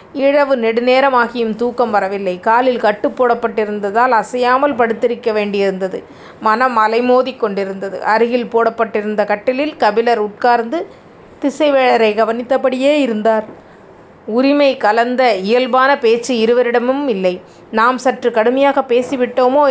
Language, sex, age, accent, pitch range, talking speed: Tamil, female, 30-49, native, 215-255 Hz, 95 wpm